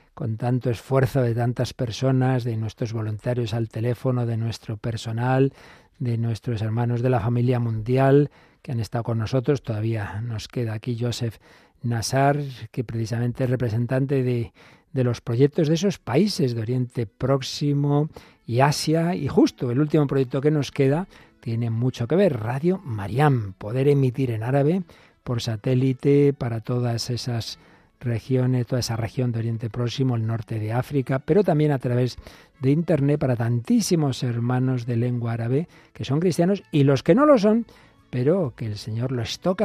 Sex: male